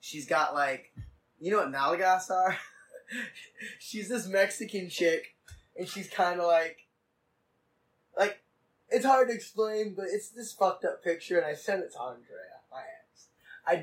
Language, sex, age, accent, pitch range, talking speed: English, male, 10-29, American, 135-220 Hz, 160 wpm